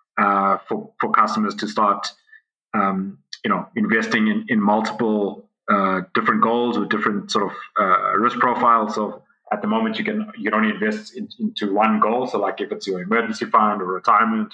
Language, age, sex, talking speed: English, 20-39, male, 190 wpm